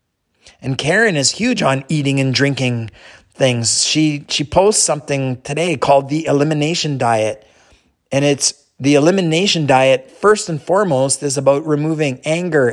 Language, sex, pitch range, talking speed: English, male, 130-180 Hz, 140 wpm